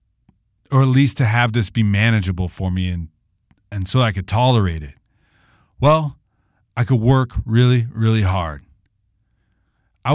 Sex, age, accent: male, 40-59, American